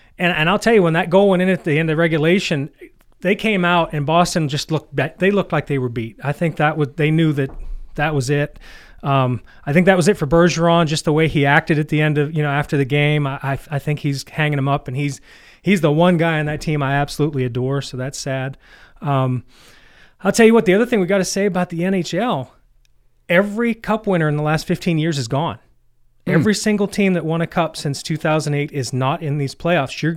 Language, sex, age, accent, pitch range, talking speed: English, male, 30-49, American, 140-175 Hz, 250 wpm